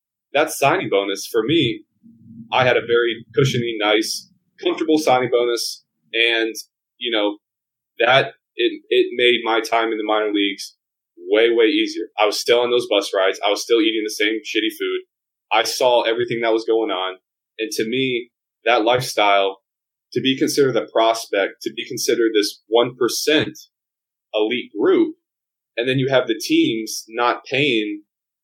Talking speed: 160 wpm